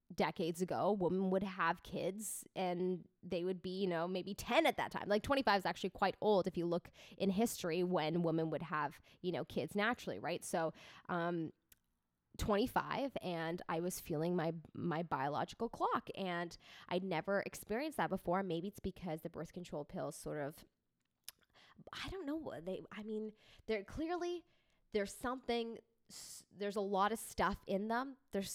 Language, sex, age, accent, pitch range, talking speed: English, female, 20-39, American, 175-220 Hz, 175 wpm